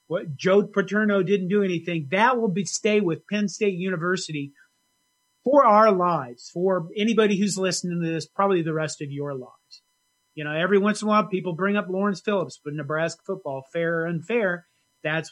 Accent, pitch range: American, 155-200 Hz